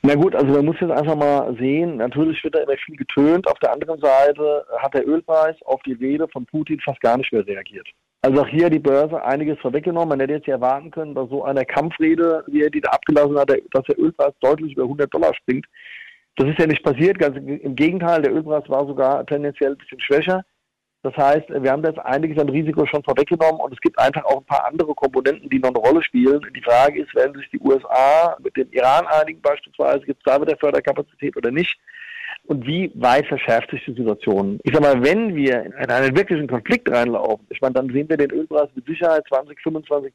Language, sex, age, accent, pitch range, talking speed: German, male, 40-59, German, 140-165 Hz, 225 wpm